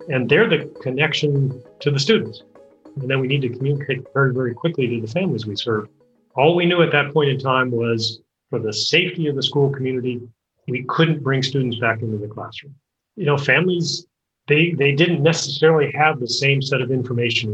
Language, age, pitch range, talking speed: English, 40-59, 120-150 Hz, 200 wpm